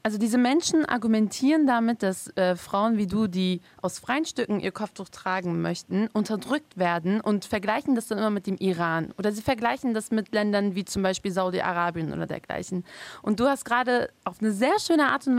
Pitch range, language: 200-250 Hz, German